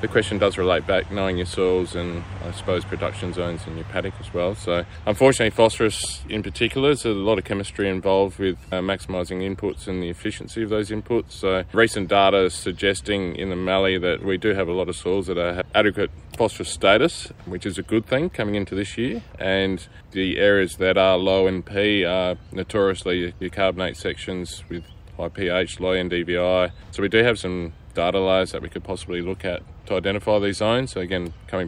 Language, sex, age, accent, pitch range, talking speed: English, male, 20-39, Australian, 90-105 Hz, 195 wpm